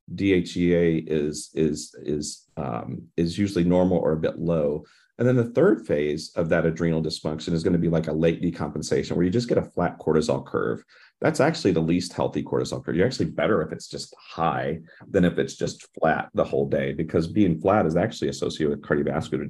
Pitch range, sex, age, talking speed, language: 75-85 Hz, male, 40-59, 205 wpm, English